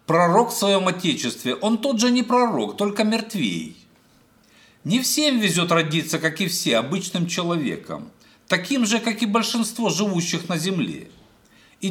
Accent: native